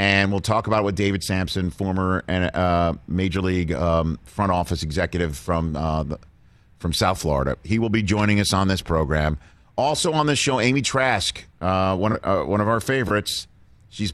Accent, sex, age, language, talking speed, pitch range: American, male, 40-59, English, 190 wpm, 95-115 Hz